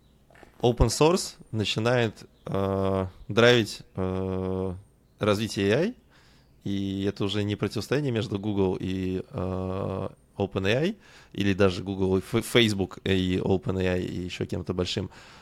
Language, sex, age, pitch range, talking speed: Russian, male, 20-39, 95-115 Hz, 115 wpm